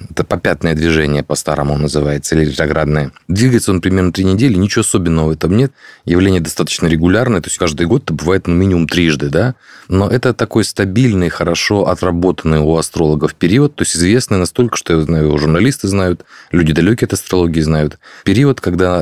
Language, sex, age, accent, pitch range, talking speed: Russian, male, 30-49, native, 85-110 Hz, 175 wpm